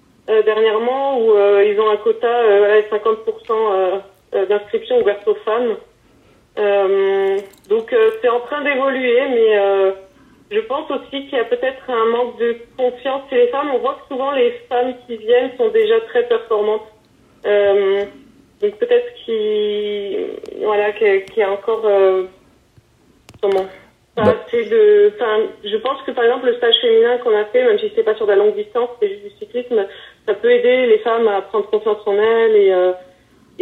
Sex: female